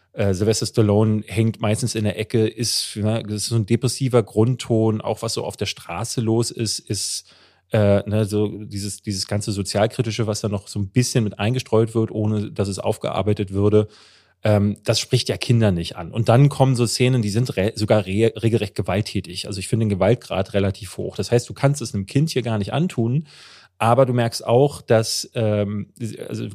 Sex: male